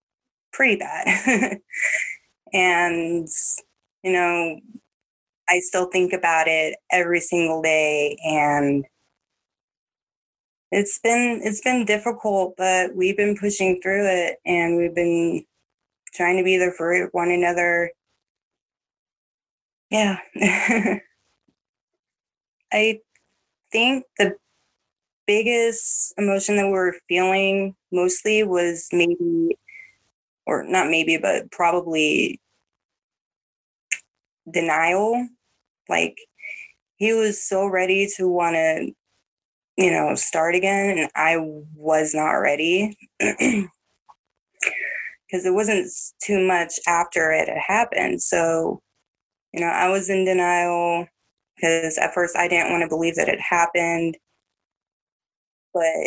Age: 20-39